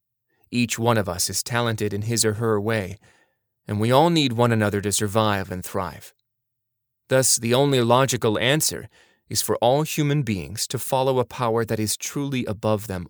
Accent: American